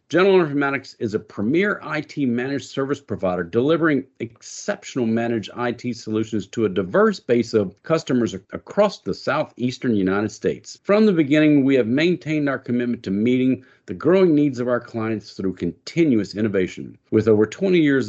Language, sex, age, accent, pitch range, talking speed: English, male, 50-69, American, 115-155 Hz, 155 wpm